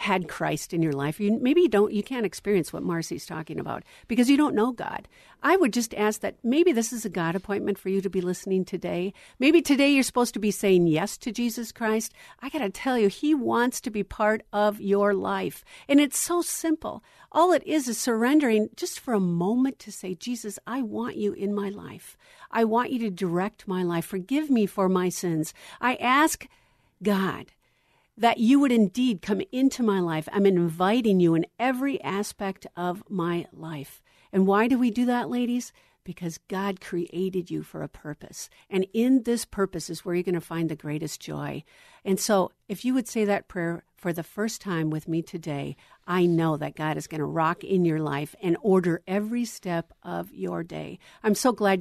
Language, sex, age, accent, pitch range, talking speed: English, female, 50-69, American, 175-245 Hz, 205 wpm